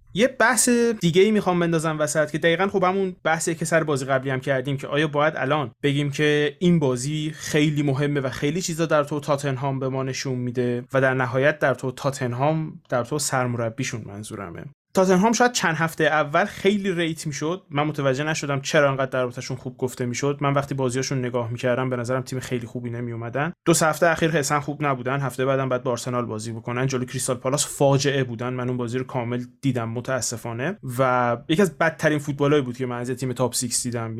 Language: Persian